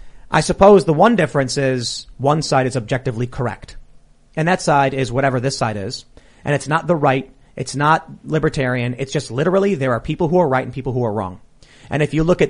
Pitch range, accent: 135-185 Hz, American